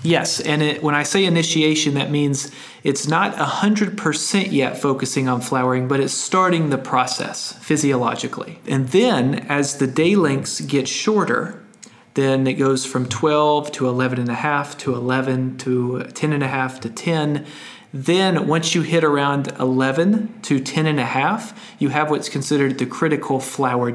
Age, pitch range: 40-59, 130-155 Hz